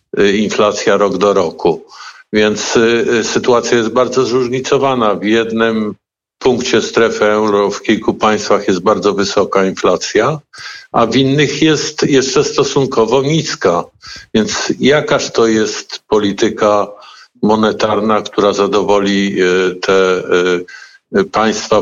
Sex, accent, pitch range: male, native, 100-120 Hz